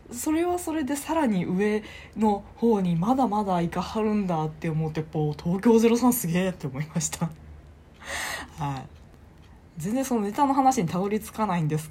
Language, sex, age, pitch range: Japanese, female, 20-39, 155-250 Hz